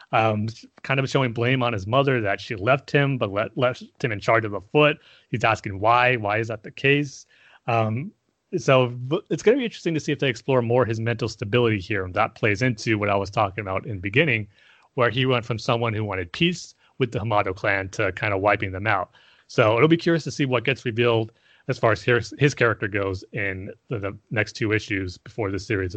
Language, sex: English, male